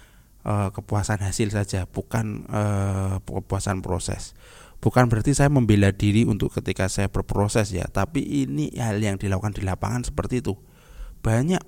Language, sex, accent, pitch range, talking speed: Indonesian, male, native, 95-125 Hz, 145 wpm